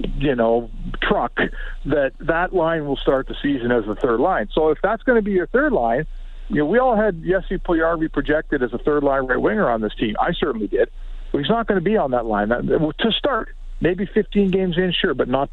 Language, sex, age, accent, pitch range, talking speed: English, male, 50-69, American, 145-200 Hz, 235 wpm